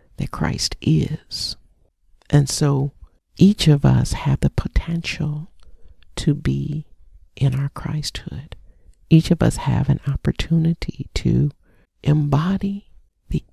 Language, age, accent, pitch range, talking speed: English, 50-69, American, 135-160 Hz, 110 wpm